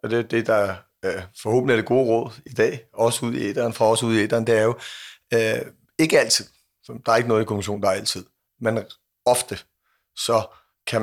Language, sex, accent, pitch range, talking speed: Danish, male, native, 105-120 Hz, 220 wpm